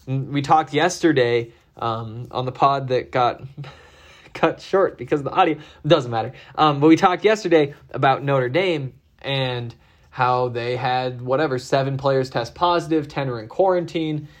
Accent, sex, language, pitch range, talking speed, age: American, male, English, 125-155 Hz, 155 wpm, 20-39